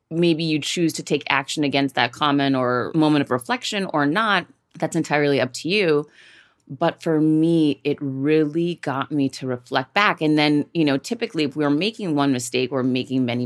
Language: English